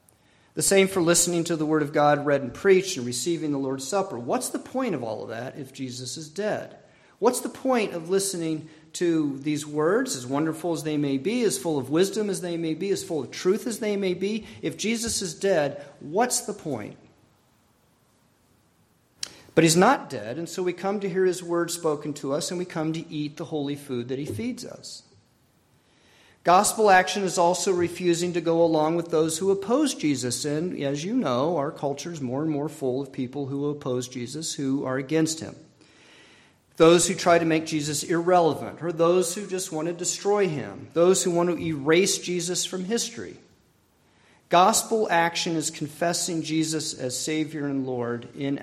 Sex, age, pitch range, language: male, 40-59, 140-180 Hz, English